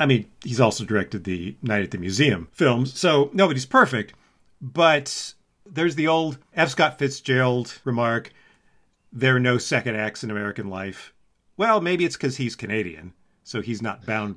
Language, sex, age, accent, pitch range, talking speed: English, male, 40-59, American, 110-165 Hz, 165 wpm